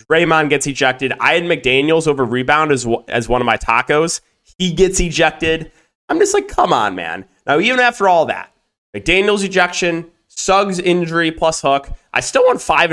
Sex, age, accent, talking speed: male, 20-39, American, 180 wpm